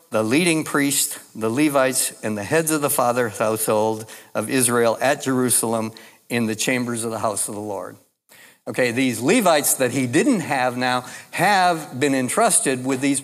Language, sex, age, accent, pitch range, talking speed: English, male, 60-79, American, 120-150 Hz, 170 wpm